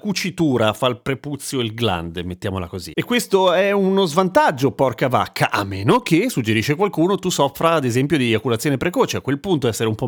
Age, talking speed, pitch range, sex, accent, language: 30-49, 195 wpm, 115-155 Hz, male, native, Italian